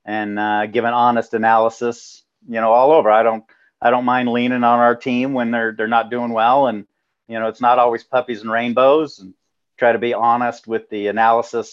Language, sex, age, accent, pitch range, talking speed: English, male, 50-69, American, 110-125 Hz, 215 wpm